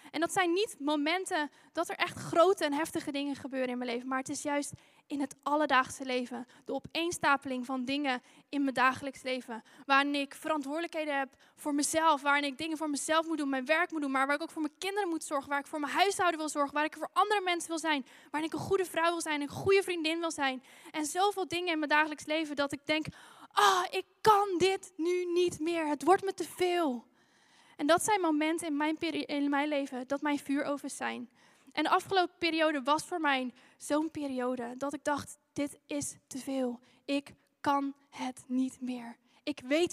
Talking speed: 215 wpm